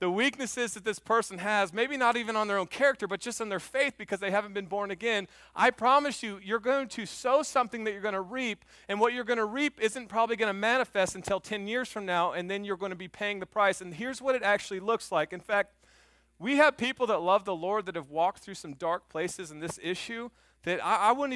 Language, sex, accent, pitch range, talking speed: English, male, American, 155-220 Hz, 260 wpm